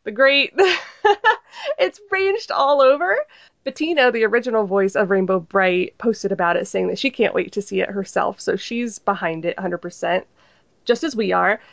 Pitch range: 200-265 Hz